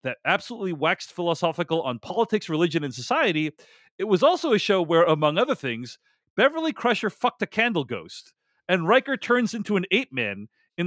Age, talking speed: 30-49, 175 wpm